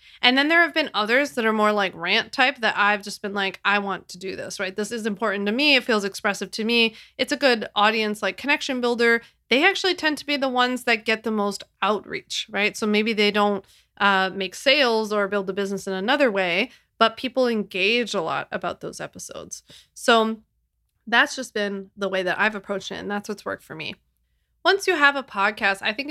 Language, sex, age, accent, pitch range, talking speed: English, female, 20-39, American, 200-245 Hz, 225 wpm